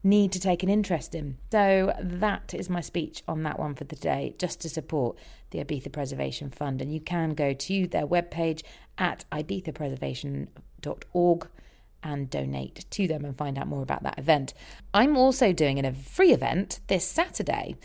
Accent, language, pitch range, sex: British, English, 140-180 Hz, female